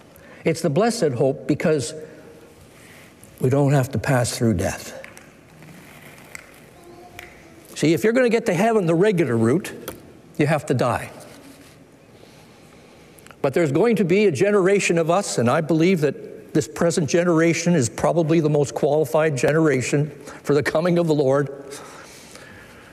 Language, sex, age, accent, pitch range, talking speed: English, male, 60-79, American, 145-200 Hz, 145 wpm